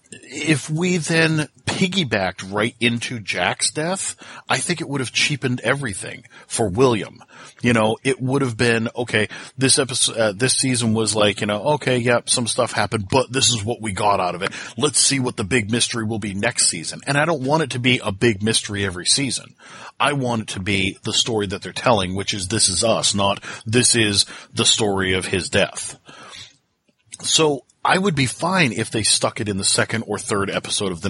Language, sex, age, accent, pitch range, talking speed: English, male, 40-59, American, 105-130 Hz, 210 wpm